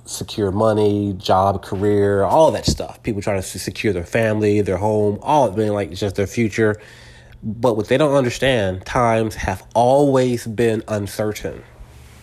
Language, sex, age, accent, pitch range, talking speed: English, male, 30-49, American, 100-120 Hz, 150 wpm